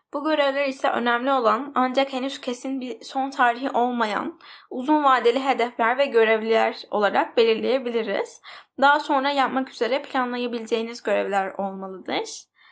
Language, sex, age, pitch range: Turkish, female, 10-29, 225-275 Hz